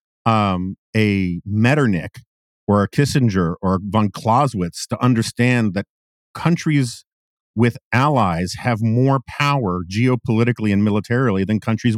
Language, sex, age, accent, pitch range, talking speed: English, male, 50-69, American, 115-150 Hz, 115 wpm